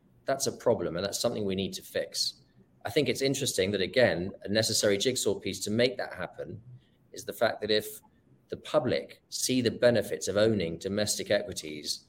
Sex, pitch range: male, 95-115 Hz